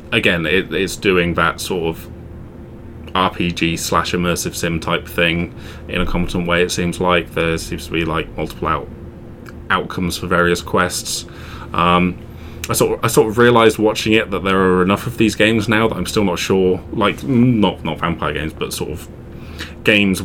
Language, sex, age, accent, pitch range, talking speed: English, male, 20-39, British, 85-100 Hz, 190 wpm